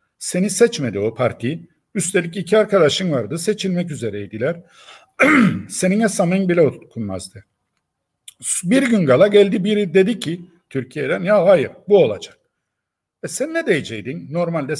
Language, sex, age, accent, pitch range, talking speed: Turkish, male, 50-69, native, 150-225 Hz, 125 wpm